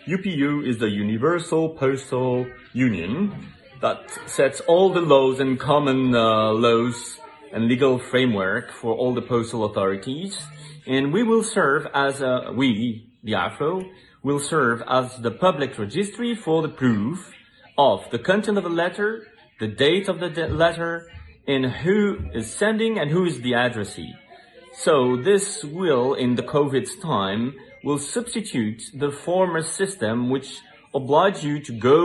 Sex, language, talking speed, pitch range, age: male, English, 145 wpm, 115-170 Hz, 30-49